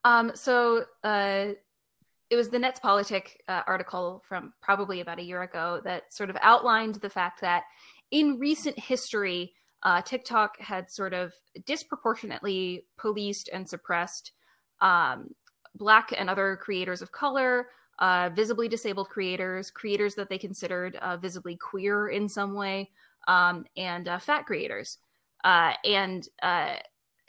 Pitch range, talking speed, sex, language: 185-250 Hz, 140 wpm, female, English